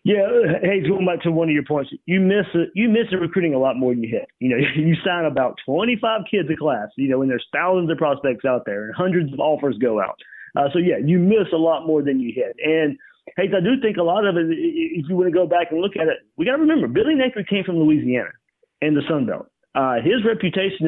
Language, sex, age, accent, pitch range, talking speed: English, male, 40-59, American, 135-185 Hz, 260 wpm